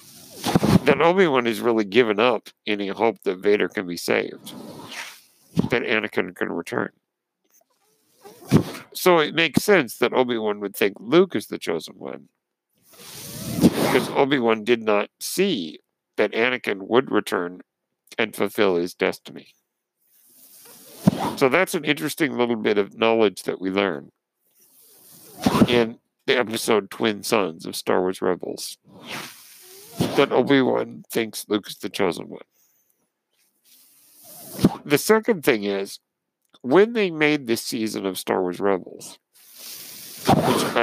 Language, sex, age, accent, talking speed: English, male, 50-69, American, 125 wpm